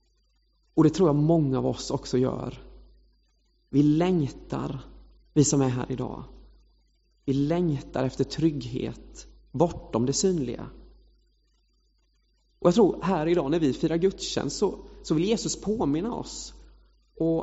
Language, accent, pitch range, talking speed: English, Swedish, 120-180 Hz, 130 wpm